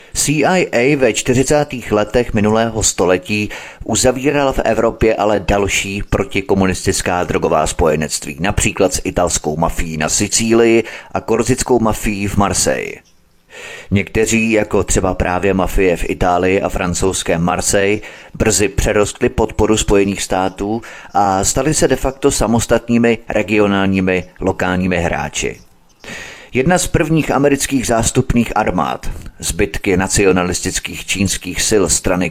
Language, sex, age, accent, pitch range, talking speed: Czech, male, 30-49, native, 90-115 Hz, 110 wpm